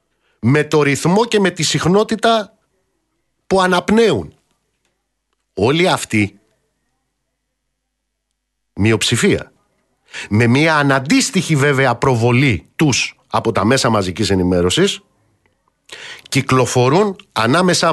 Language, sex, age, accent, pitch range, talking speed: Greek, male, 50-69, native, 125-190 Hz, 85 wpm